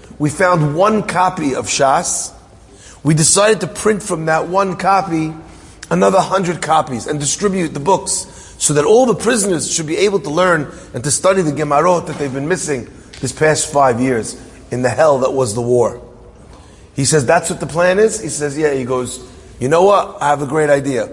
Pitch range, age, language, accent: 135-185 Hz, 30-49, English, American